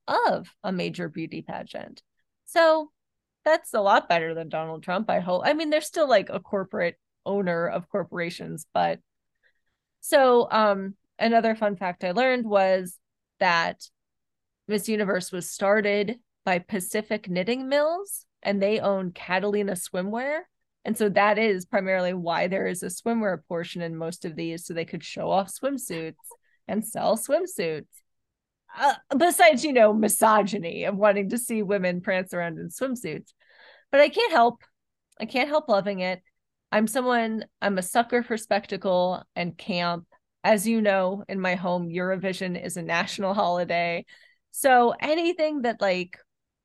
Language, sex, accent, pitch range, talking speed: English, female, American, 185-240 Hz, 155 wpm